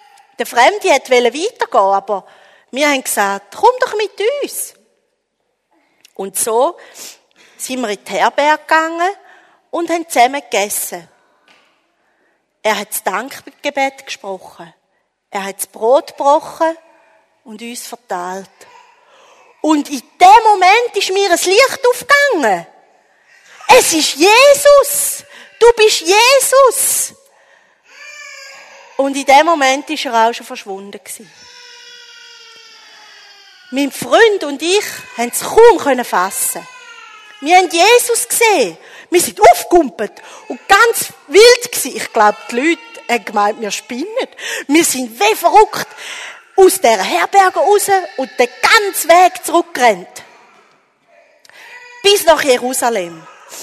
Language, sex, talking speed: German, female, 115 wpm